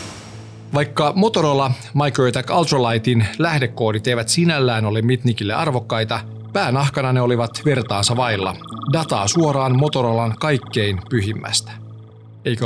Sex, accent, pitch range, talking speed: male, native, 110-140 Hz, 100 wpm